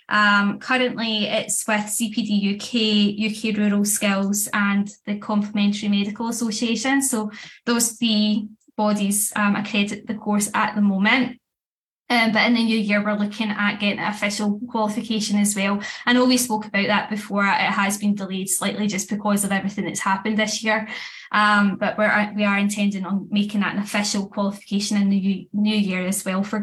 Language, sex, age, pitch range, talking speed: English, female, 10-29, 200-220 Hz, 180 wpm